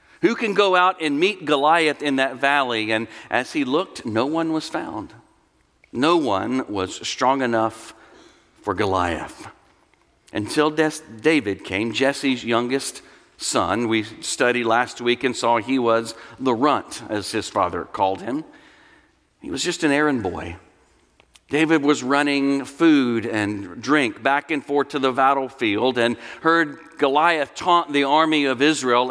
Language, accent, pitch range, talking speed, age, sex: English, American, 120-170 Hz, 150 wpm, 50-69, male